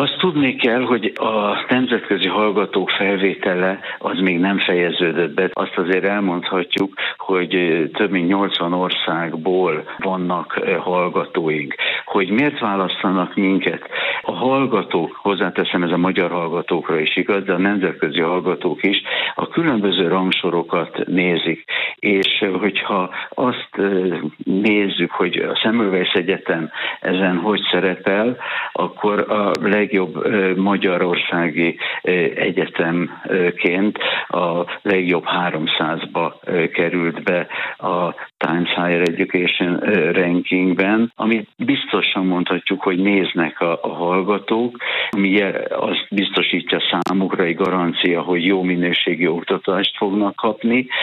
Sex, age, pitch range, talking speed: male, 60-79, 90-105 Hz, 110 wpm